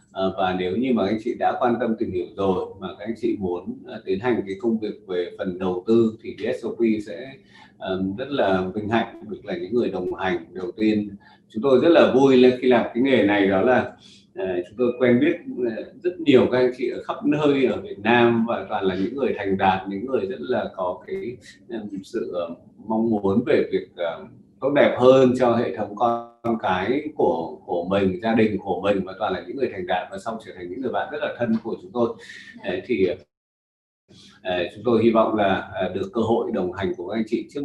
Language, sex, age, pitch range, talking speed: Vietnamese, male, 20-39, 95-125 Hz, 220 wpm